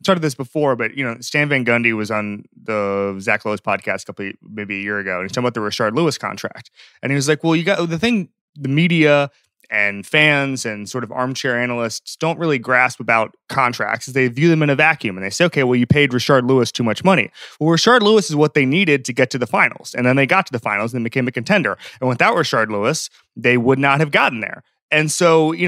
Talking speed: 255 wpm